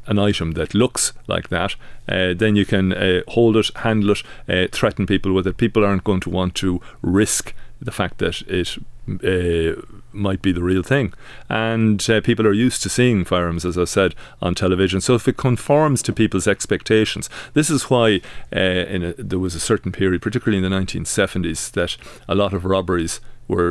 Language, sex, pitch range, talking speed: English, male, 90-110 Hz, 195 wpm